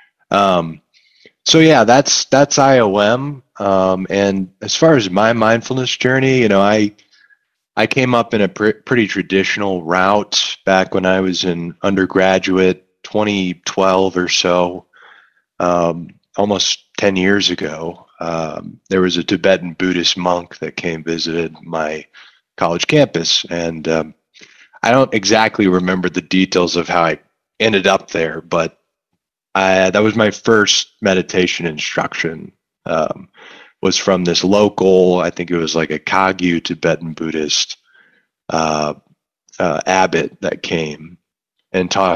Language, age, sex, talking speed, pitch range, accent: English, 30-49, male, 135 wpm, 85-110 Hz, American